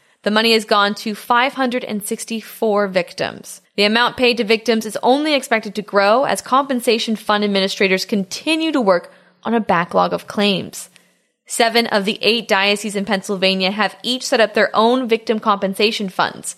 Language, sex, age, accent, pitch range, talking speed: English, female, 10-29, American, 195-250 Hz, 165 wpm